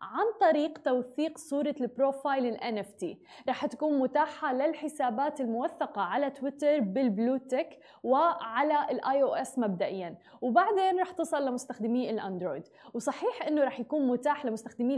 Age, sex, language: 20-39, female, Arabic